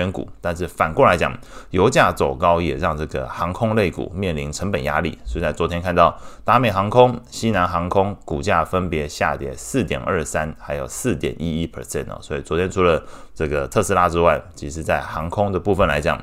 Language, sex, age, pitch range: Chinese, male, 20-39, 75-95 Hz